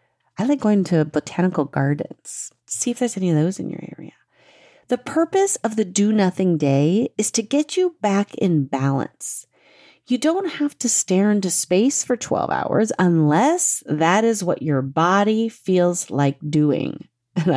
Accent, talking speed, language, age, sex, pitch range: American, 165 wpm, English, 40-59, female, 160-245 Hz